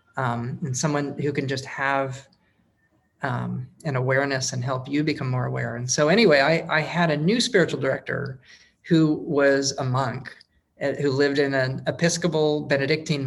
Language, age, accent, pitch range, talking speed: English, 30-49, American, 130-155 Hz, 165 wpm